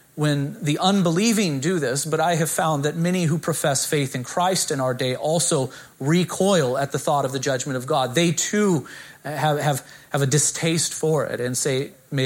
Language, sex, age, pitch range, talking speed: English, male, 30-49, 135-170 Hz, 195 wpm